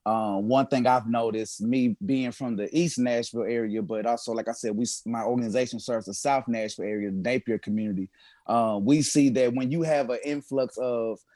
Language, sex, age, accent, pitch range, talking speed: English, male, 30-49, American, 115-140 Hz, 200 wpm